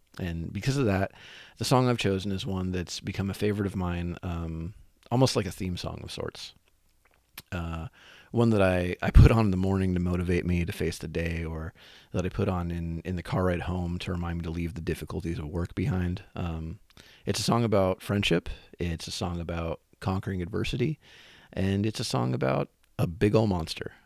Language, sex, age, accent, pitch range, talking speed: English, male, 30-49, American, 85-105 Hz, 205 wpm